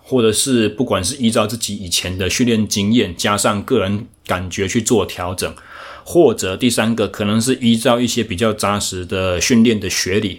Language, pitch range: Chinese, 95-120 Hz